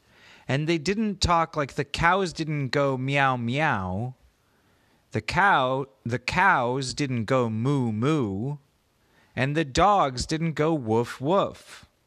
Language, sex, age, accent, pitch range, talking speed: English, male, 30-49, American, 105-165 Hz, 115 wpm